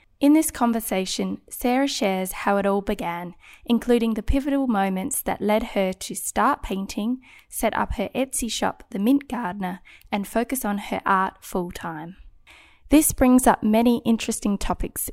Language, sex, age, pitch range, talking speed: English, female, 10-29, 190-235 Hz, 155 wpm